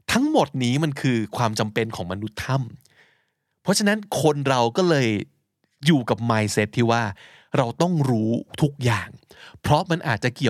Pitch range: 115-165 Hz